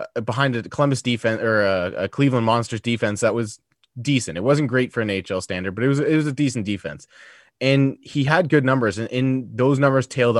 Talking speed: 220 wpm